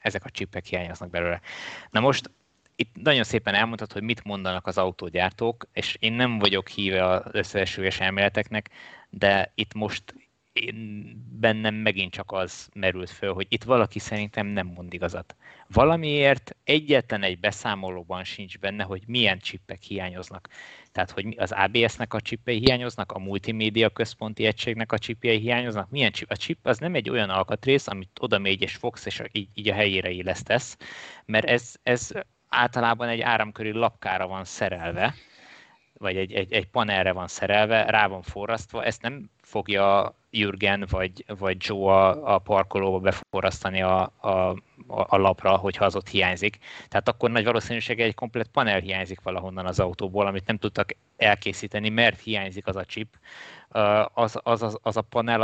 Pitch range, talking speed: 95-115 Hz, 155 wpm